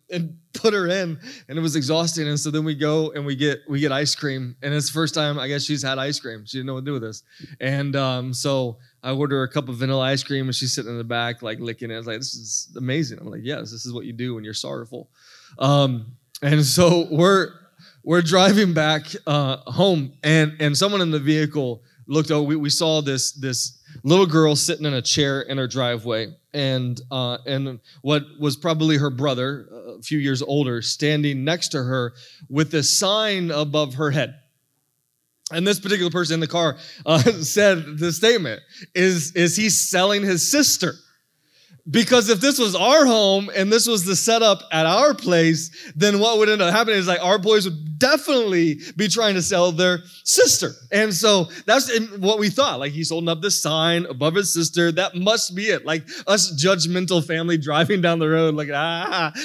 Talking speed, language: 210 wpm, English